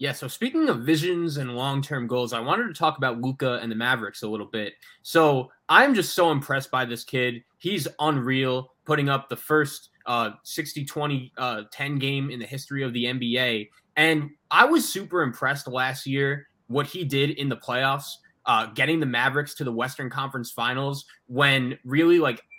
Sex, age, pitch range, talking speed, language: male, 20-39, 130-155 Hz, 190 wpm, English